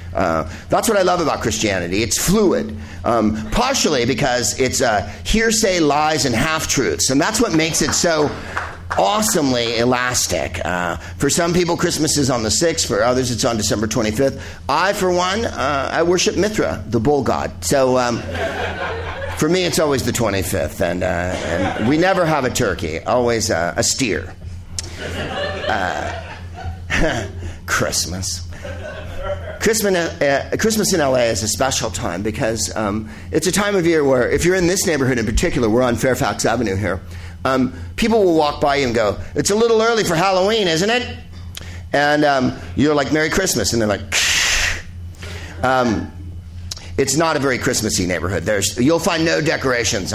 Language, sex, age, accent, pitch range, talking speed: English, male, 50-69, American, 90-155 Hz, 165 wpm